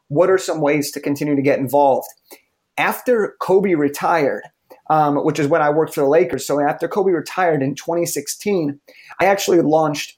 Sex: male